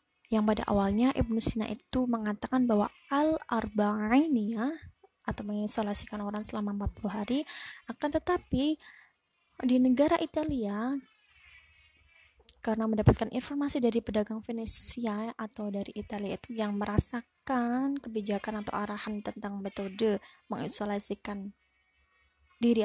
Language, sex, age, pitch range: Indonesian, female, 20-39, 210-255 Hz